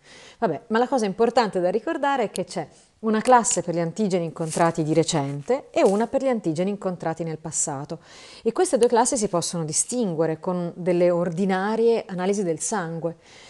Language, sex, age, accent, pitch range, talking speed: Italian, female, 40-59, native, 165-215 Hz, 175 wpm